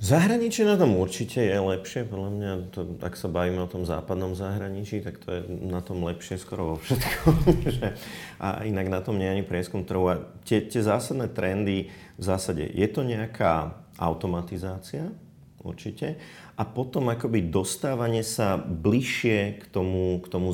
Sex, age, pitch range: male, 30-49, 90-105 Hz